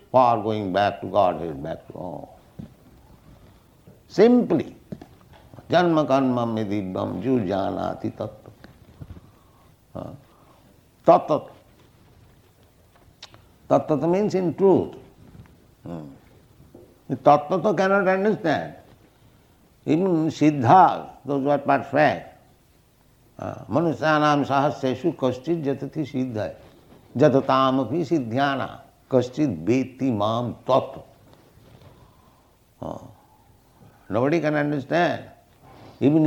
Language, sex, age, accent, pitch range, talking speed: English, male, 60-79, Indian, 120-155 Hz, 70 wpm